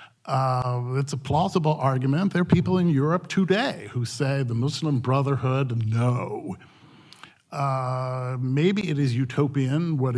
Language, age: English, 50-69